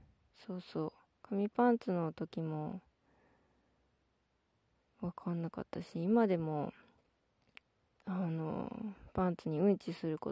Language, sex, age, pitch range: Japanese, female, 20-39, 165-215 Hz